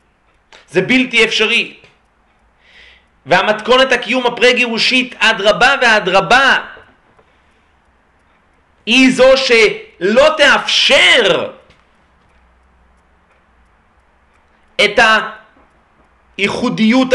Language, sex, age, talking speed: Hebrew, male, 40-59, 55 wpm